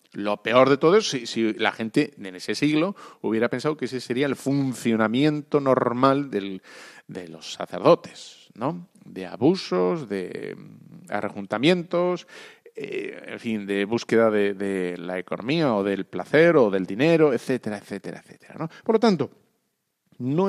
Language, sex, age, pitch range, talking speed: Spanish, male, 40-59, 105-160 Hz, 150 wpm